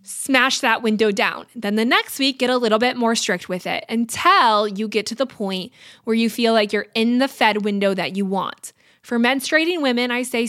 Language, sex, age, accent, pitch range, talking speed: English, female, 20-39, American, 205-260 Hz, 225 wpm